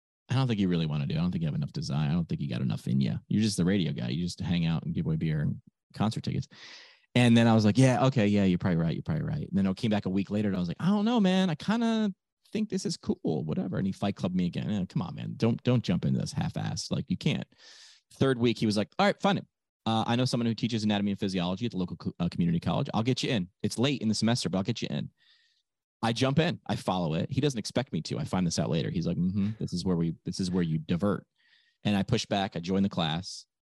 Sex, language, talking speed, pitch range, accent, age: male, English, 300 wpm, 100-160 Hz, American, 30-49